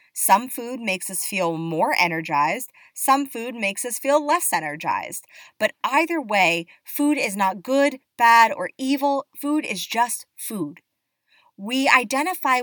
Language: English